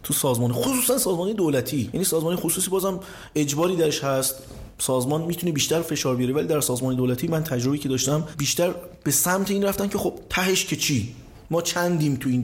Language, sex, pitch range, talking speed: Persian, male, 130-170 Hz, 190 wpm